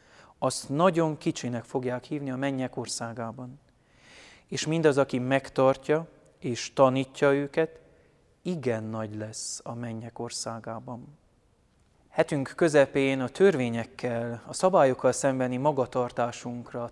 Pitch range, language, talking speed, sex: 120-145 Hz, Hungarian, 105 wpm, male